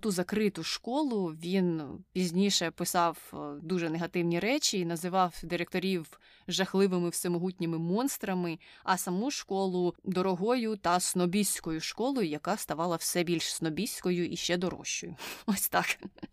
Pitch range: 170-205 Hz